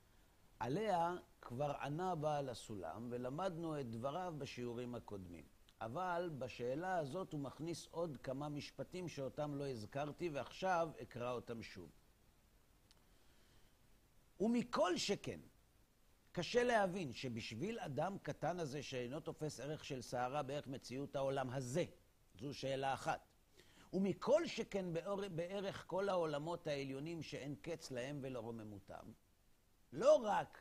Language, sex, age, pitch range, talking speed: Hebrew, male, 50-69, 115-175 Hz, 110 wpm